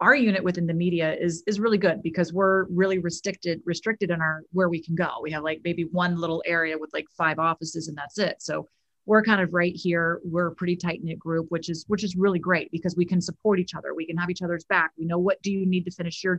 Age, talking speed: 30-49, 265 wpm